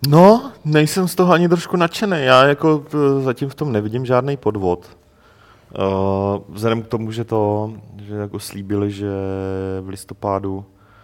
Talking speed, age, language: 140 wpm, 30-49, Czech